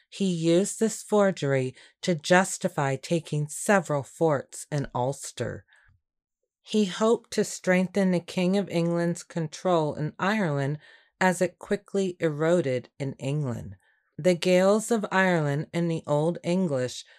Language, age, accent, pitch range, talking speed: English, 30-49, American, 145-195 Hz, 125 wpm